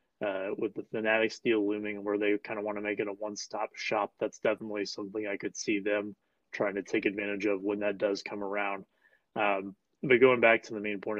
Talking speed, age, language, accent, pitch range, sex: 230 wpm, 20-39, English, American, 105-115 Hz, male